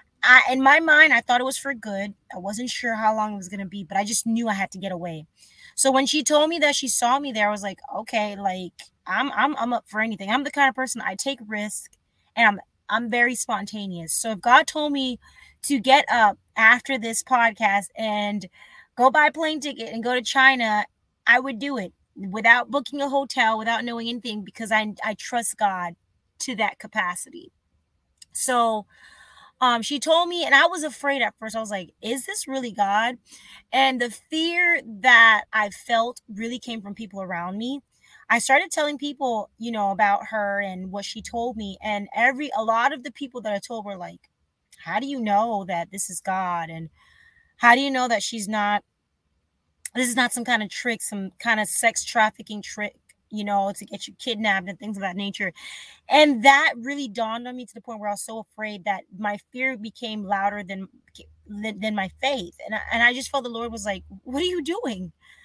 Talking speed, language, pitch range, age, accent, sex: 215 wpm, English, 205-260 Hz, 20-39, American, female